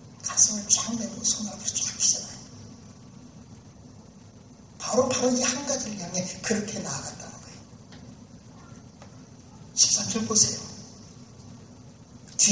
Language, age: Korean, 40-59